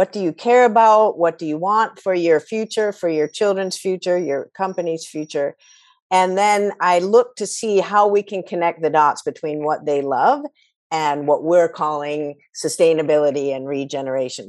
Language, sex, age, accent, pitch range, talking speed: English, female, 50-69, American, 150-210 Hz, 175 wpm